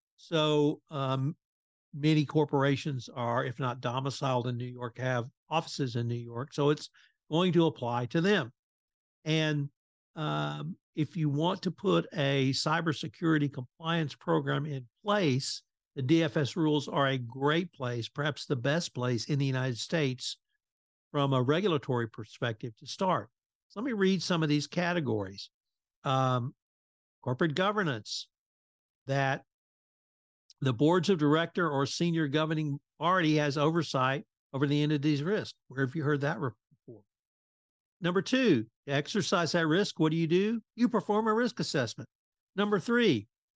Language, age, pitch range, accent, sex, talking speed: English, 60-79, 135-175 Hz, American, male, 150 wpm